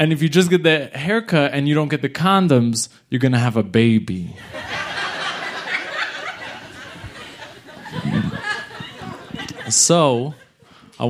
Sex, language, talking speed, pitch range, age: male, English, 115 wpm, 110-145 Hz, 20-39